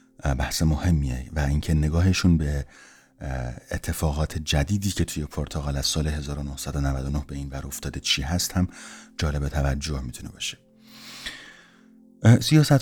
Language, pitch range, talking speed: Persian, 75-90 Hz, 120 wpm